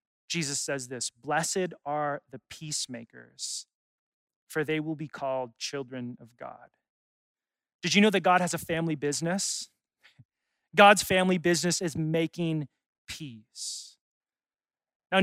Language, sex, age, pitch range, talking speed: English, male, 30-49, 155-200 Hz, 120 wpm